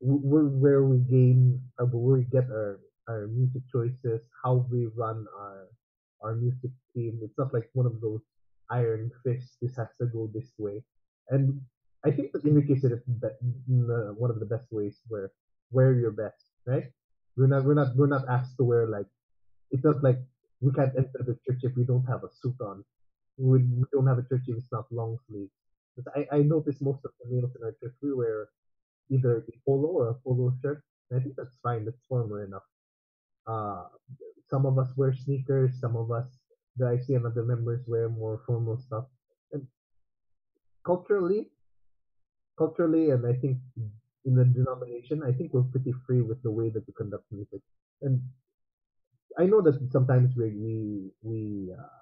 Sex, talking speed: male, 180 wpm